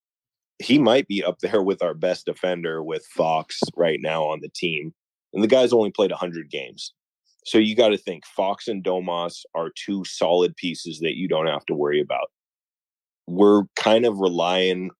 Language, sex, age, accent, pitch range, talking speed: English, male, 20-39, American, 85-100 Hz, 190 wpm